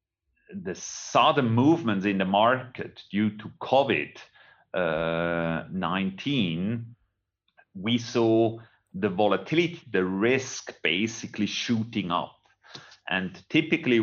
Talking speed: 90 wpm